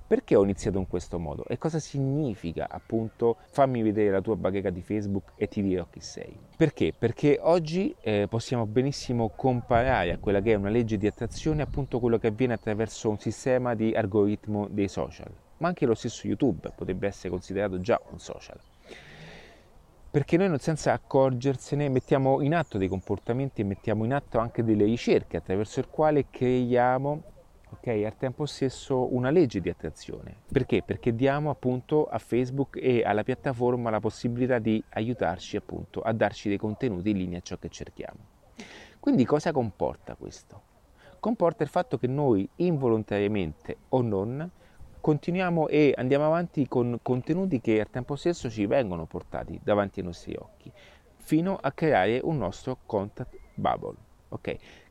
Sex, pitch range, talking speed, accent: male, 100-135 Hz, 160 wpm, native